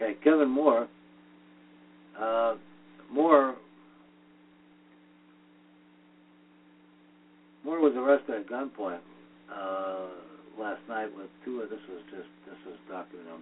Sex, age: male, 60-79